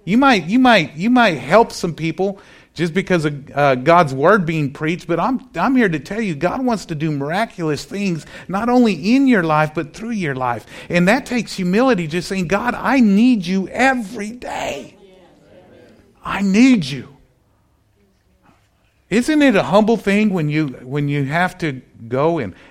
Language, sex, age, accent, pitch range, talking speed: English, male, 50-69, American, 140-195 Hz, 175 wpm